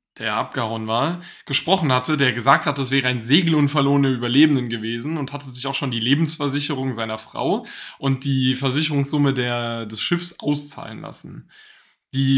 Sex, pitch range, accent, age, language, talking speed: male, 120-145 Hz, German, 10-29, German, 155 wpm